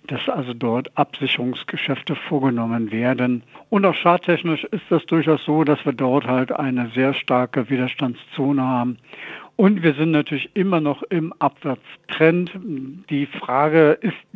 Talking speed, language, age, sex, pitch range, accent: 140 wpm, German, 60-79, male, 130-155 Hz, German